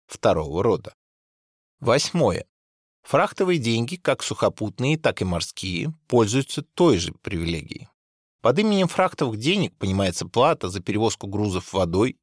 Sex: male